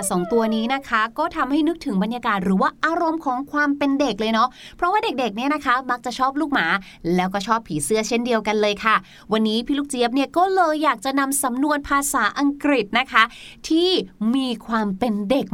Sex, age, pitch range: female, 20-39, 220-300 Hz